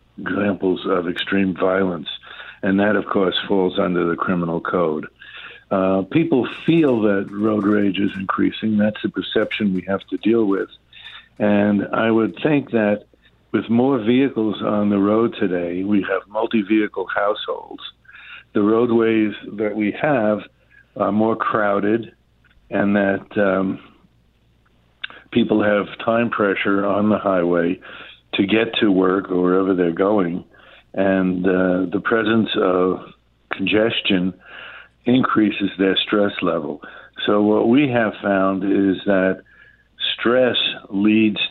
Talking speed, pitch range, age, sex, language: 130 wpm, 95-105 Hz, 60-79, male, English